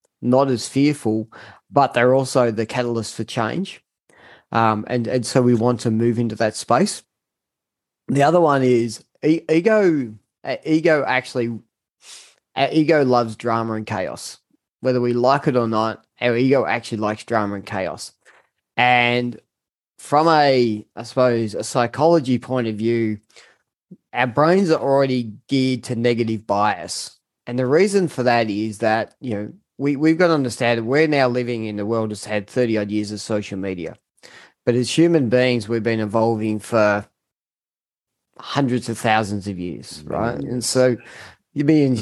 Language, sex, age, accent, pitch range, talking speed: English, male, 20-39, Australian, 110-135 Hz, 160 wpm